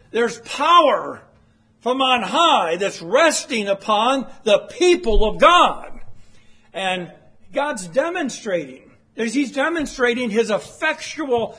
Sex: male